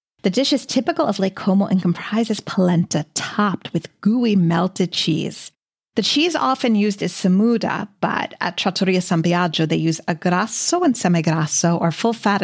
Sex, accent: female, American